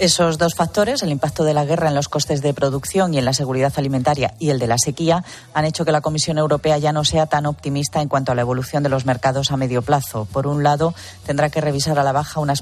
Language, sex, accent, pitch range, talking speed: Spanish, female, Spanish, 140-165 Hz, 260 wpm